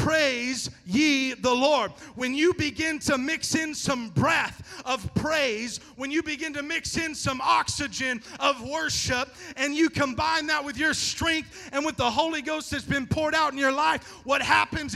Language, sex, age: English, male, 40-59